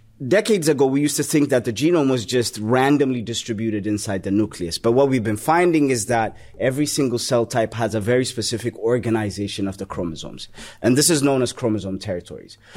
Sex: male